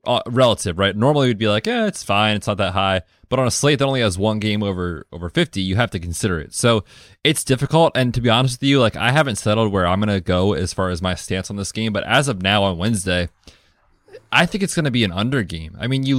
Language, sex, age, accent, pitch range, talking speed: English, male, 20-39, American, 95-125 Hz, 275 wpm